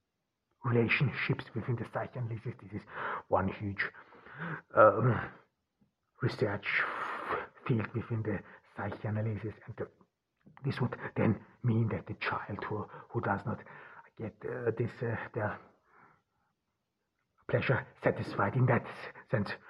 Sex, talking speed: male, 115 wpm